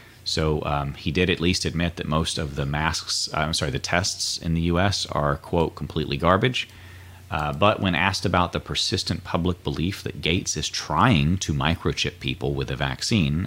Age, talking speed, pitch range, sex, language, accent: 30-49, 185 wpm, 75-95 Hz, male, English, American